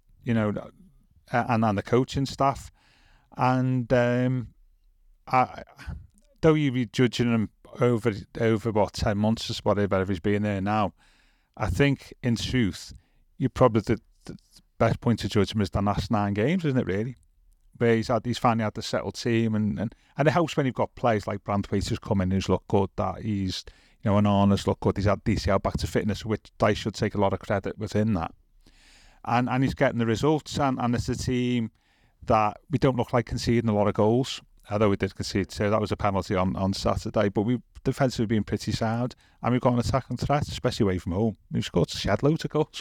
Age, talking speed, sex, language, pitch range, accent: 30-49, 215 wpm, male, English, 100-125 Hz, British